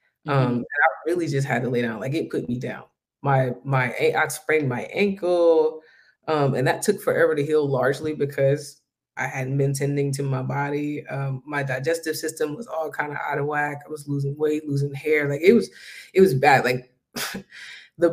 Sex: female